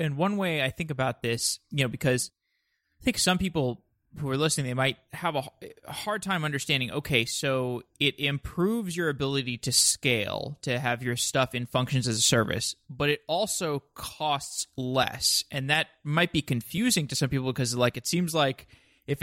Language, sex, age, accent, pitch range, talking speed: English, male, 20-39, American, 125-155 Hz, 185 wpm